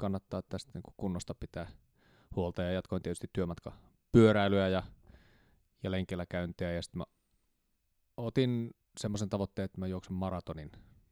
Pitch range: 85-105 Hz